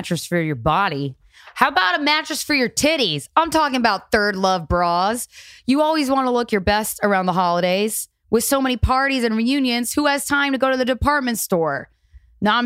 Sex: female